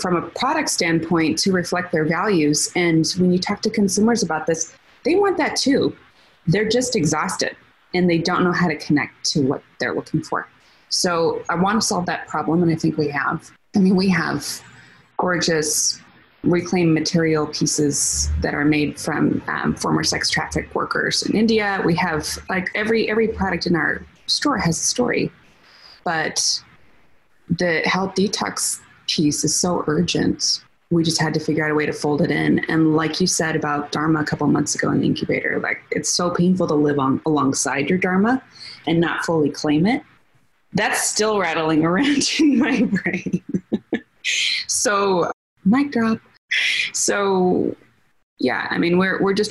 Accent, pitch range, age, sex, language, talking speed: American, 155-195 Hz, 20-39, female, English, 175 wpm